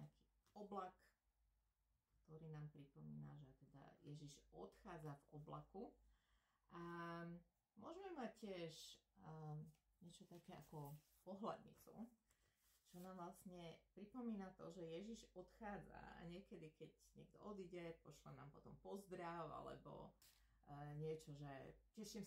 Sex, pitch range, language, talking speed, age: female, 150-185 Hz, Slovak, 110 wpm, 30-49